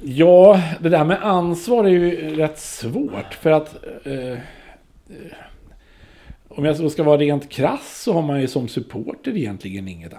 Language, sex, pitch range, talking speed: Swedish, male, 95-130 Hz, 155 wpm